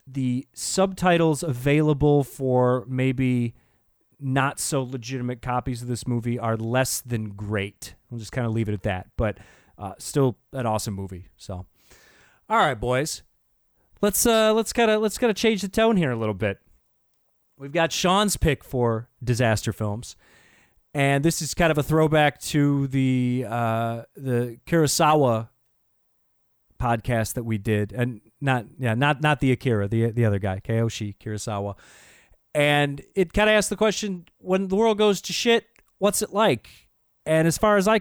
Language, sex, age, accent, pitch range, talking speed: English, male, 30-49, American, 115-165 Hz, 165 wpm